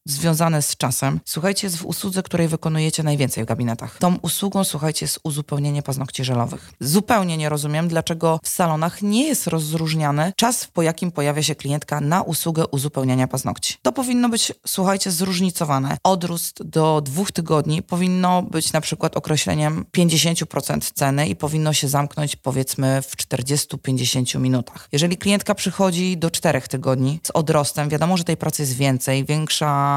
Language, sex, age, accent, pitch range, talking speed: Polish, female, 20-39, native, 145-180 Hz, 155 wpm